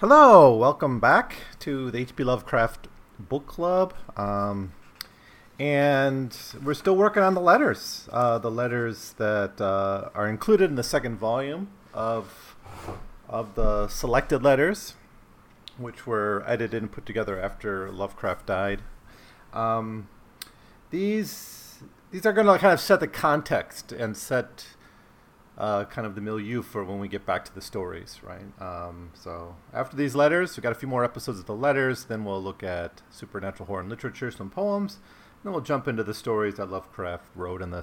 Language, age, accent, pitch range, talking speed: English, 40-59, American, 100-150 Hz, 165 wpm